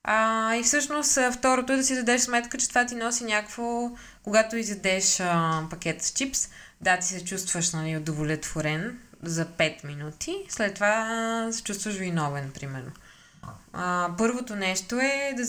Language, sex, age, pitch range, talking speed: Bulgarian, female, 20-39, 160-225 Hz, 155 wpm